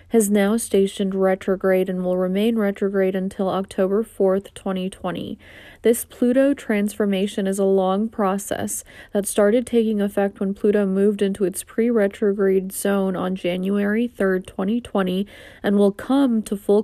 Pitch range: 195-215 Hz